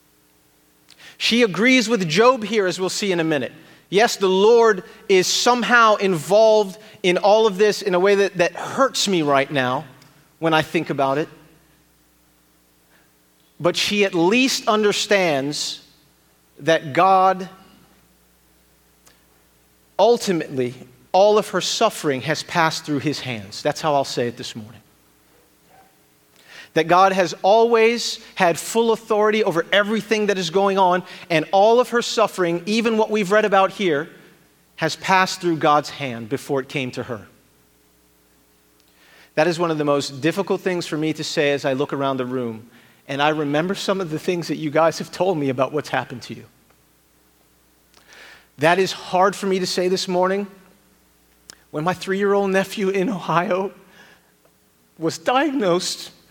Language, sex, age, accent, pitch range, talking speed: English, male, 40-59, American, 135-195 Hz, 155 wpm